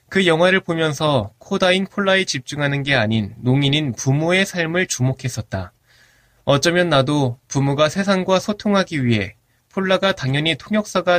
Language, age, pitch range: Korean, 20-39, 125-185 Hz